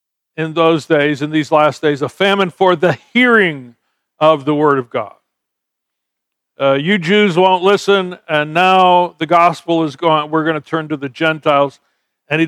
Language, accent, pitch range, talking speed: English, American, 145-175 Hz, 180 wpm